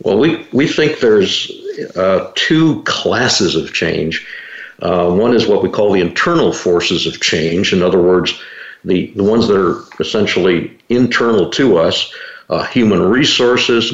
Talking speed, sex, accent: 155 wpm, male, American